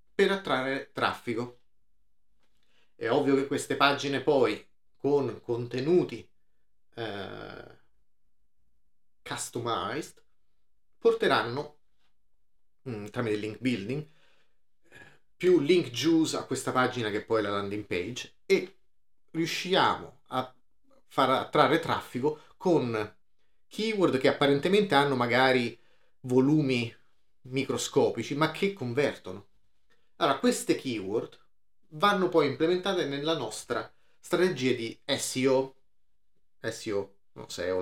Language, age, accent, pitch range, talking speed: Italian, 30-49, native, 115-170 Hz, 95 wpm